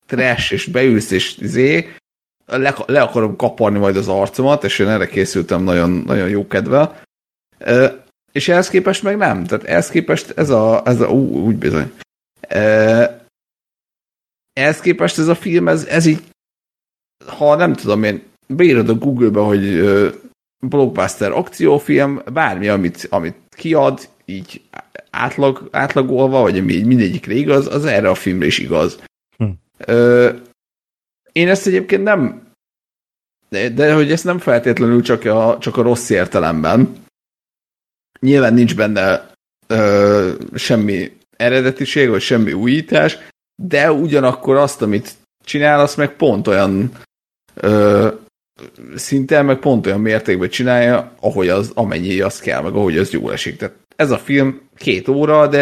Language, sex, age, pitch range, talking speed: Hungarian, male, 50-69, 105-145 Hz, 140 wpm